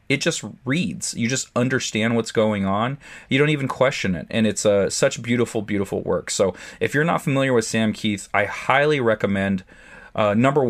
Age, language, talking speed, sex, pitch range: 30-49, English, 195 wpm, male, 100-125 Hz